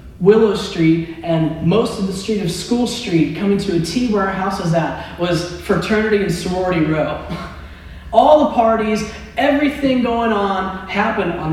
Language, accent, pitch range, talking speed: English, American, 170-220 Hz, 165 wpm